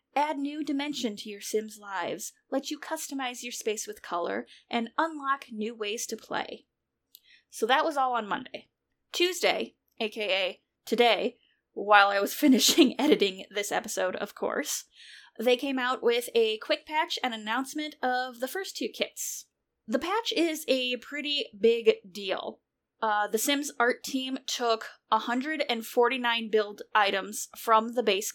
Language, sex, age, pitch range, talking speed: English, female, 10-29, 210-270 Hz, 150 wpm